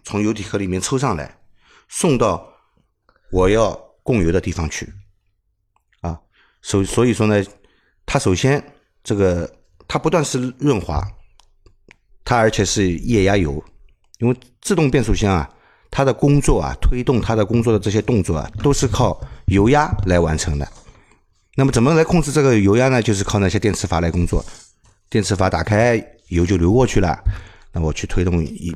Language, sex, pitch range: Chinese, male, 90-115 Hz